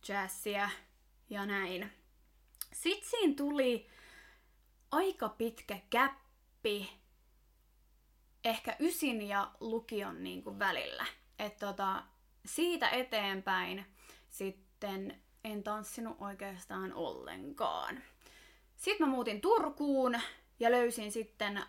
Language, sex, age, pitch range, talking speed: Finnish, female, 20-39, 200-275 Hz, 90 wpm